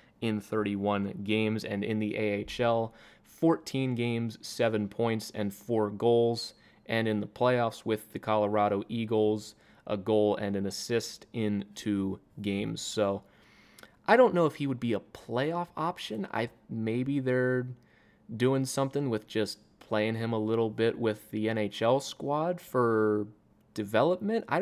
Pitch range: 105-115 Hz